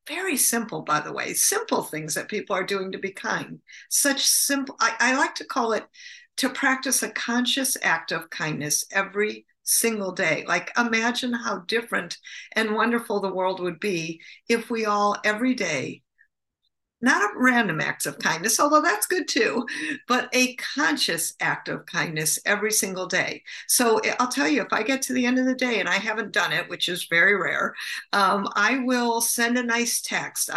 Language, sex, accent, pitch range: English, female, American, 185-255 Hz